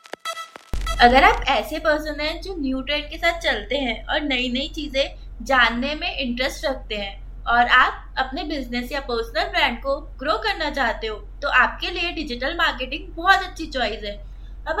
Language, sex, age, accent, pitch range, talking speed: Hindi, female, 20-39, native, 265-340 Hz, 175 wpm